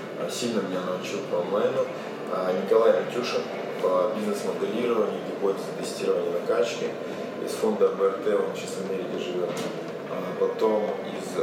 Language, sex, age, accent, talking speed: Russian, male, 20-39, native, 125 wpm